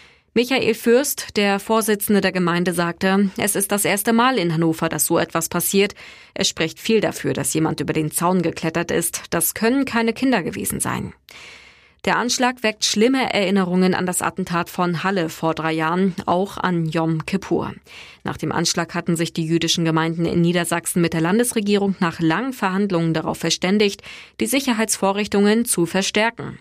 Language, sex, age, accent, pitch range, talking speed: German, female, 20-39, German, 165-215 Hz, 165 wpm